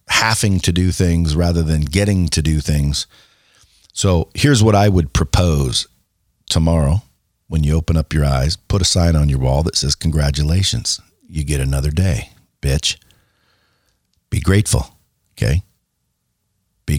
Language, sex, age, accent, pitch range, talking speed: English, male, 50-69, American, 85-110 Hz, 145 wpm